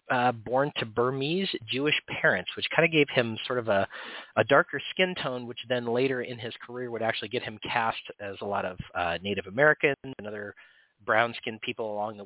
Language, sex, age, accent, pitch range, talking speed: English, male, 30-49, American, 110-140 Hz, 205 wpm